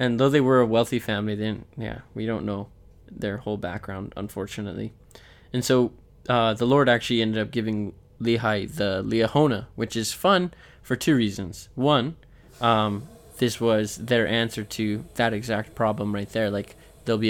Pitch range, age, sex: 105-120 Hz, 20-39, male